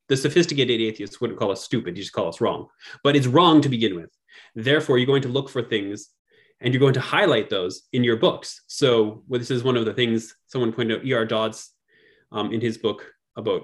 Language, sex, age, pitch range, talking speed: English, male, 20-39, 110-140 Hz, 230 wpm